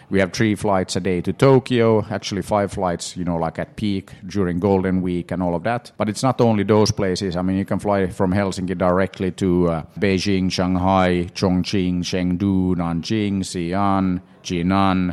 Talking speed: 185 wpm